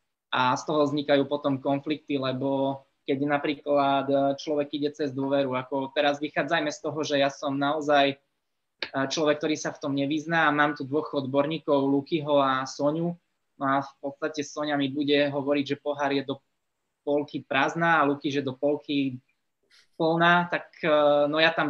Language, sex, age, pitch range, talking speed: Slovak, male, 20-39, 135-150 Hz, 165 wpm